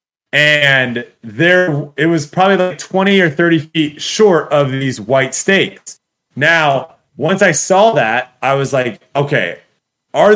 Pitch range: 135-175 Hz